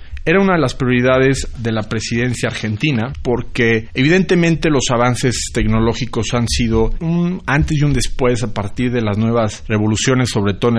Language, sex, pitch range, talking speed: Spanish, male, 110-130 Hz, 165 wpm